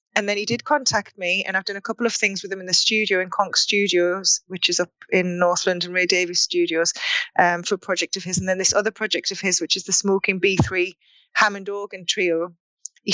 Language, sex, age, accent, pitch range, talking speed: English, female, 20-39, British, 180-205 Hz, 240 wpm